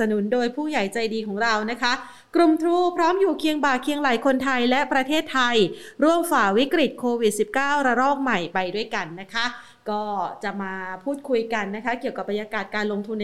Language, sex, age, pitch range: Thai, female, 30-49, 215-260 Hz